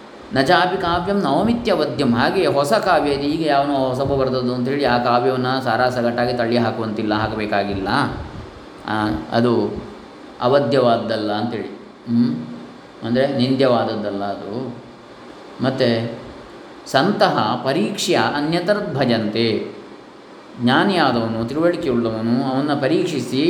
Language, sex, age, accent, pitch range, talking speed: Kannada, male, 20-39, native, 115-140 Hz, 85 wpm